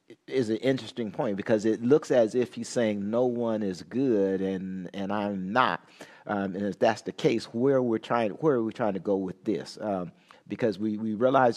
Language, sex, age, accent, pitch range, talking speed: English, male, 50-69, American, 100-115 Hz, 220 wpm